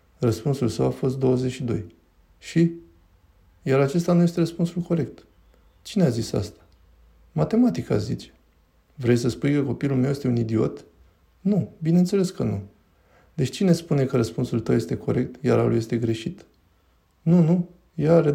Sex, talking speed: male, 155 wpm